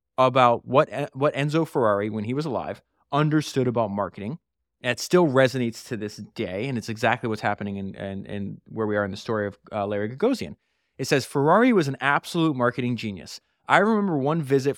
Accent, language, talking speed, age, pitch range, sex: American, English, 210 wpm, 20-39, 120-160 Hz, male